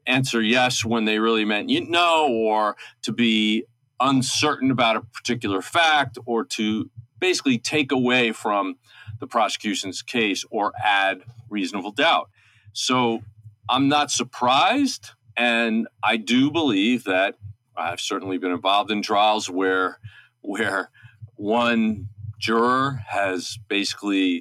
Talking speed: 120 wpm